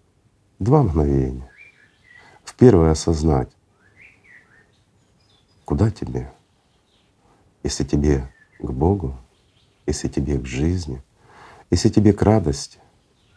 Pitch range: 70-95 Hz